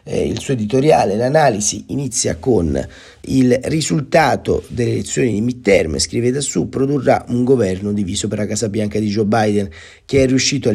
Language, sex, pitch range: Italian, male, 105-120 Hz